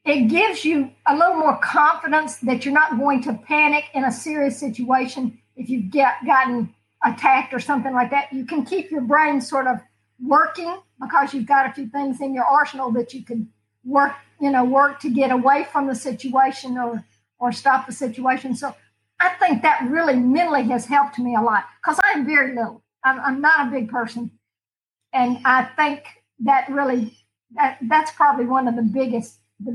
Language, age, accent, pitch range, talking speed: English, 50-69, American, 245-290 Hz, 190 wpm